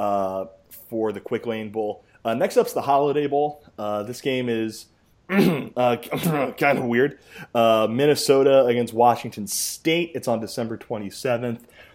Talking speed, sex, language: 145 wpm, male, English